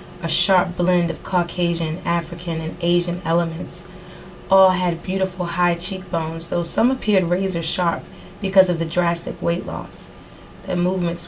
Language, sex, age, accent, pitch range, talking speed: English, female, 30-49, American, 170-190 Hz, 145 wpm